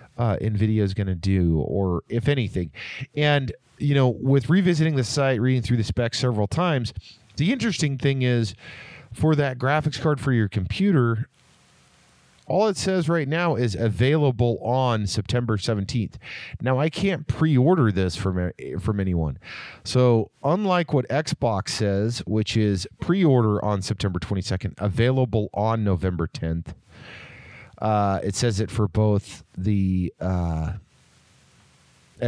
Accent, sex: American, male